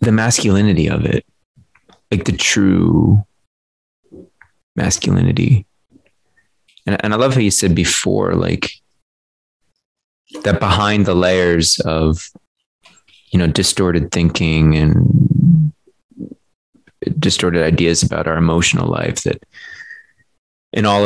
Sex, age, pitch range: male, 30-49, 85-110 Hz